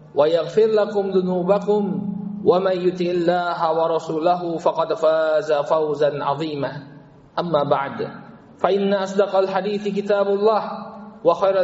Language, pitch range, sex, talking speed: Indonesian, 160-195 Hz, male, 100 wpm